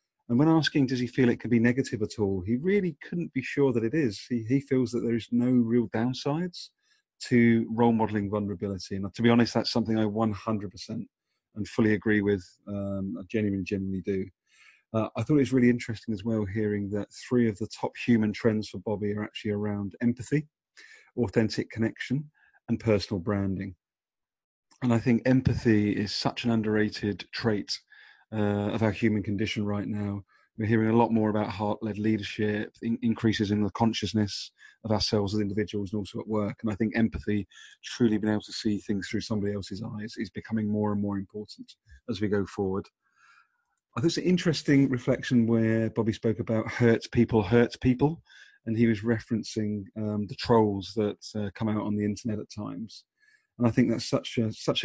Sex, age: male, 40-59